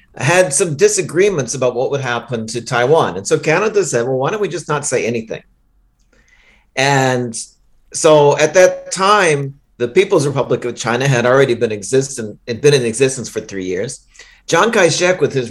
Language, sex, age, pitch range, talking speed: English, male, 50-69, 115-150 Hz, 170 wpm